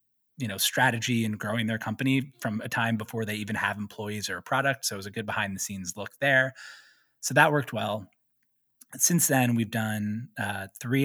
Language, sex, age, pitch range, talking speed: English, male, 20-39, 105-125 Hz, 205 wpm